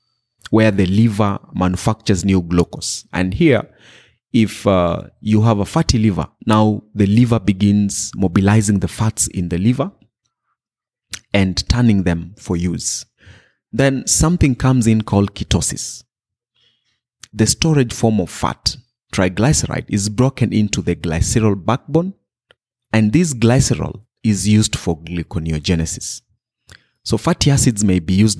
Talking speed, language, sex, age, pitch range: 130 wpm, English, male, 30-49, 95-120 Hz